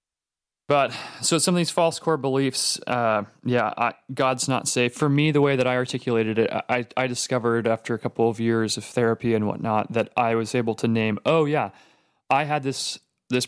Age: 30-49